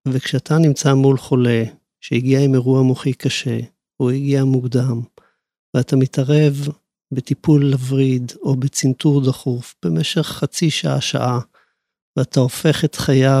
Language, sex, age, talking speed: Hebrew, male, 50-69, 115 wpm